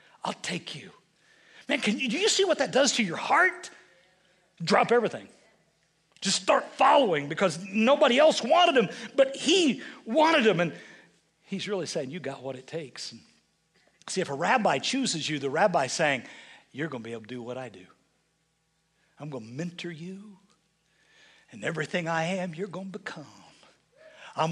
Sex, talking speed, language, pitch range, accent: male, 175 wpm, English, 160-245 Hz, American